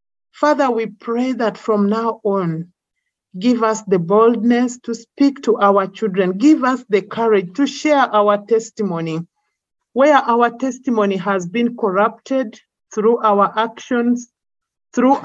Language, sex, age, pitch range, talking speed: English, male, 50-69, 200-245 Hz, 135 wpm